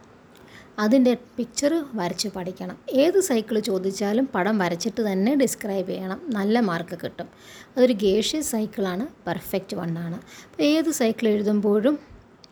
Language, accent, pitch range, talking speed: Malayalam, native, 195-235 Hz, 115 wpm